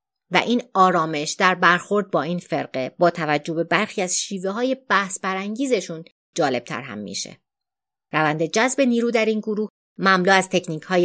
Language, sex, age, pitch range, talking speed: Persian, female, 30-49, 160-220 Hz, 170 wpm